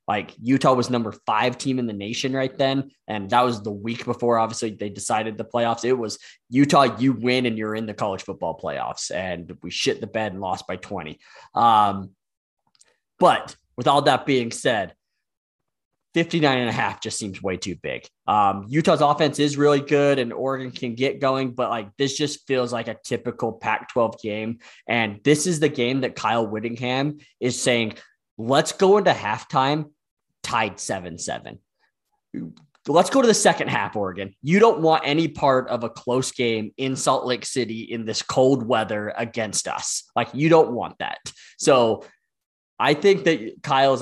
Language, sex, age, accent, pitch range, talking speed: English, male, 20-39, American, 115-140 Hz, 185 wpm